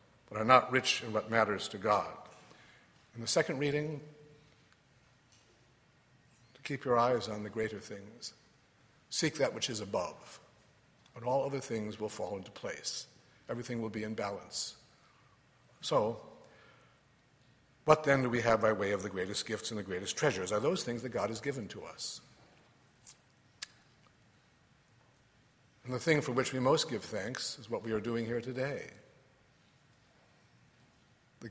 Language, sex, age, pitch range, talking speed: English, male, 60-79, 110-135 Hz, 155 wpm